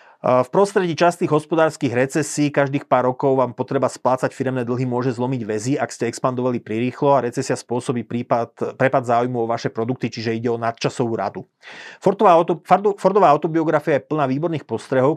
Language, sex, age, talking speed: Slovak, male, 30-49, 165 wpm